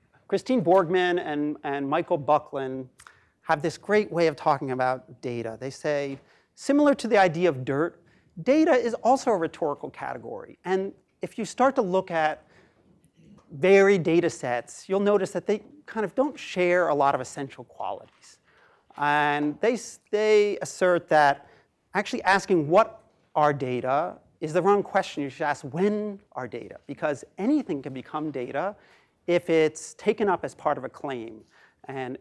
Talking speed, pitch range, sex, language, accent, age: 160 wpm, 140-185 Hz, male, English, American, 40-59